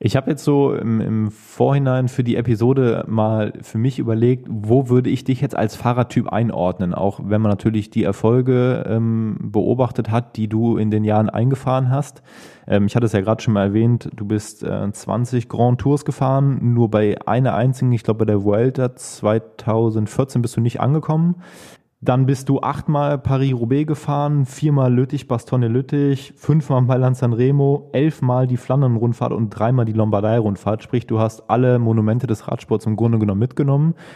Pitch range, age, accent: 110-135 Hz, 20-39, German